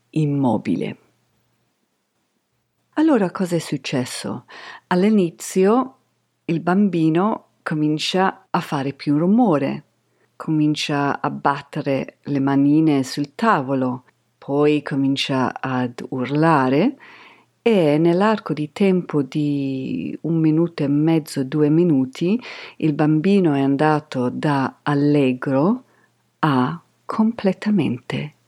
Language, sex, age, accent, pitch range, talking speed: Italian, female, 50-69, native, 135-180 Hz, 90 wpm